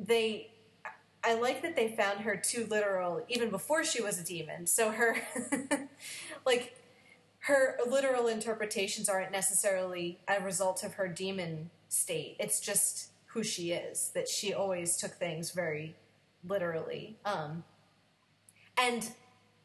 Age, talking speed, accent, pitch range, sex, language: 30-49, 130 wpm, American, 175-220 Hz, female, English